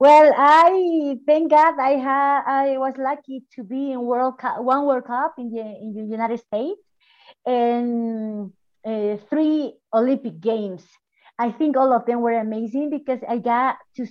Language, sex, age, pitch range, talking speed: English, female, 30-49, 220-275 Hz, 165 wpm